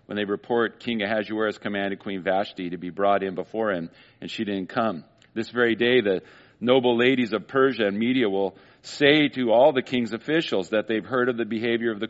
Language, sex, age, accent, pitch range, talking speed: English, male, 50-69, American, 115-175 Hz, 215 wpm